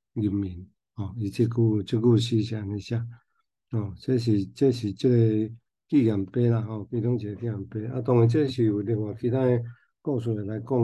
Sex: male